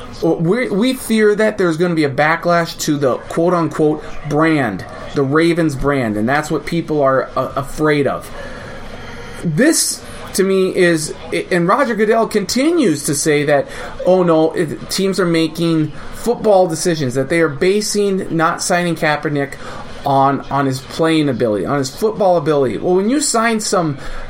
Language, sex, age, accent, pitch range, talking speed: English, male, 30-49, American, 145-195 Hz, 160 wpm